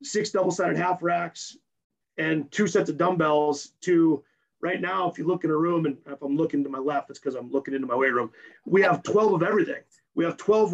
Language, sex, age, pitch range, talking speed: English, male, 30-49, 155-190 Hz, 230 wpm